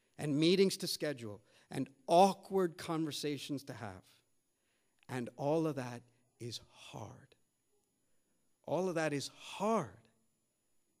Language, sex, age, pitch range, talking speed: English, male, 50-69, 120-155 Hz, 110 wpm